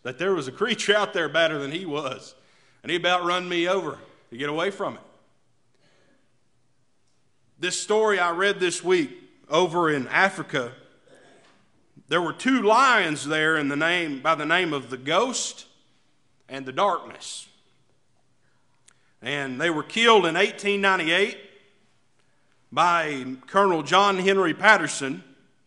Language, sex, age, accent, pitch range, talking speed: English, male, 40-59, American, 145-200 Hz, 140 wpm